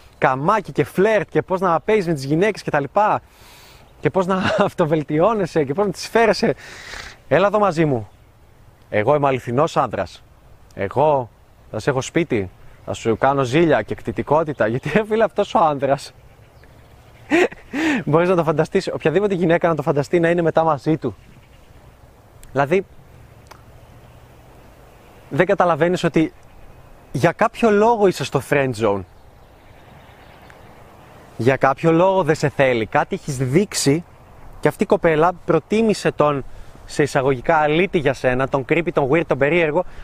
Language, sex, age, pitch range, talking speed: Greek, male, 20-39, 125-180 Hz, 145 wpm